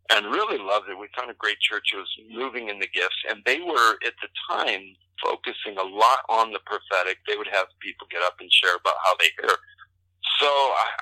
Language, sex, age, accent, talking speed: English, male, 50-69, American, 225 wpm